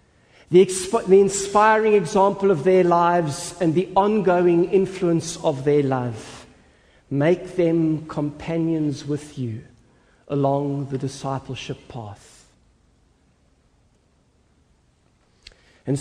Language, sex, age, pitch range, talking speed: English, male, 50-69, 125-185 Hz, 90 wpm